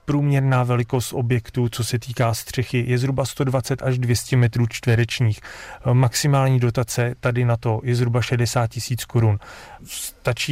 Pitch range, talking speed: 115-130 Hz, 145 wpm